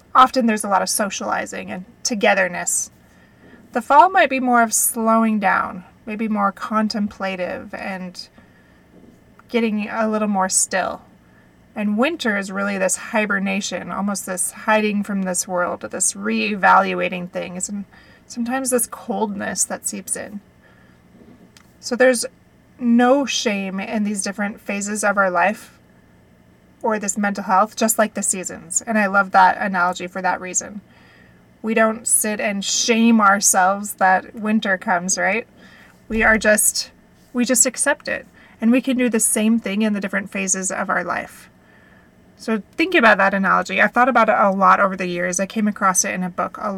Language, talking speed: English, 165 wpm